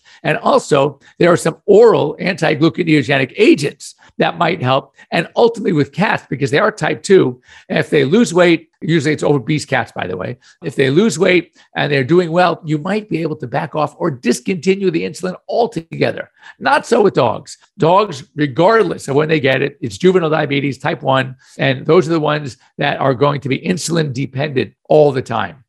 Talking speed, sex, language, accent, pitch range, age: 190 wpm, male, English, American, 135-170 Hz, 50-69